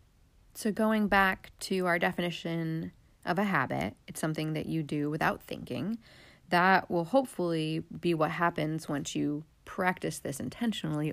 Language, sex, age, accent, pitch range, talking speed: English, female, 30-49, American, 160-190 Hz, 145 wpm